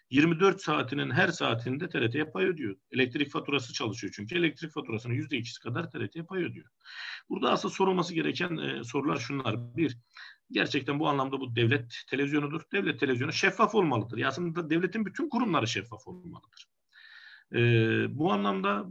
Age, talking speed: 50-69, 150 wpm